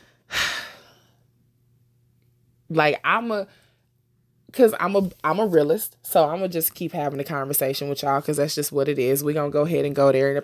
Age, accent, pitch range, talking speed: 20-39, American, 140-180 Hz, 200 wpm